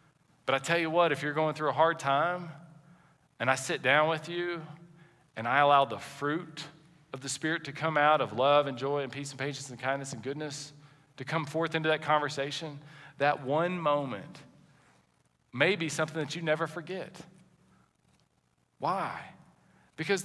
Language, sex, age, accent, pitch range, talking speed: English, male, 40-59, American, 140-175 Hz, 175 wpm